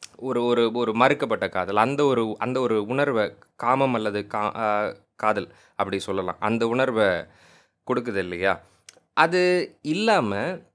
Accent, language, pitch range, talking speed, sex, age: native, Tamil, 105-145 Hz, 125 wpm, male, 20-39